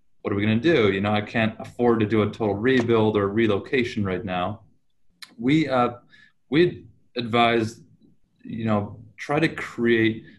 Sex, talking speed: male, 160 wpm